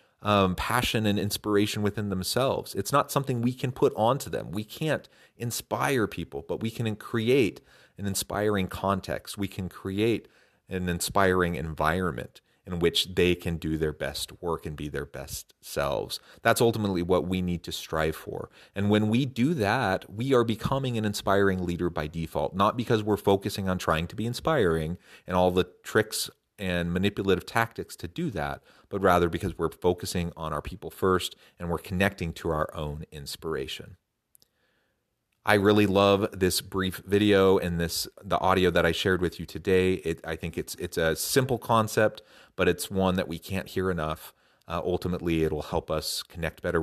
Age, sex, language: 30-49, male, English